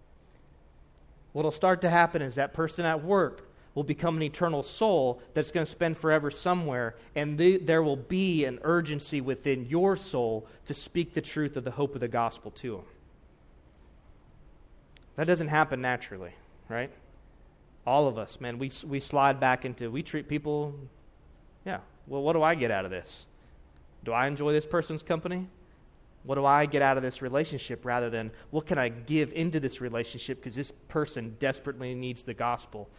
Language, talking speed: English, 180 wpm